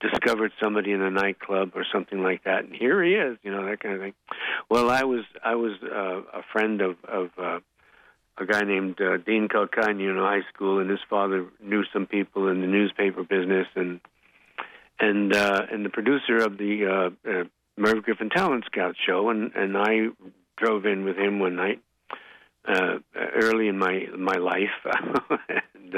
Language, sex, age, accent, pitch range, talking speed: English, male, 60-79, American, 95-105 Hz, 185 wpm